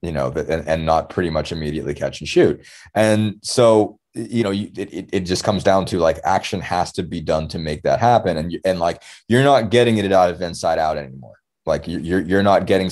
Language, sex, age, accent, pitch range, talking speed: English, male, 20-39, American, 80-95 Hz, 220 wpm